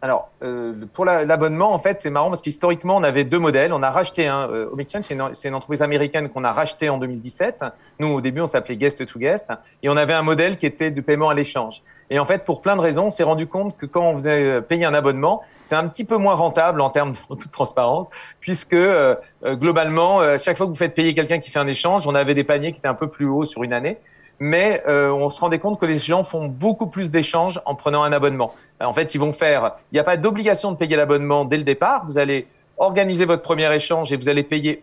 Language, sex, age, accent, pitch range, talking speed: French, male, 40-59, French, 145-180 Hz, 260 wpm